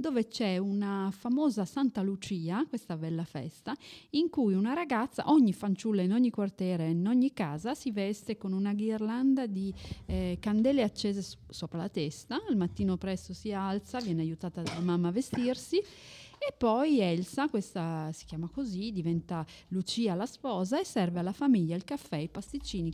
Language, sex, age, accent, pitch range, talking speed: German, female, 30-49, Italian, 175-245 Hz, 170 wpm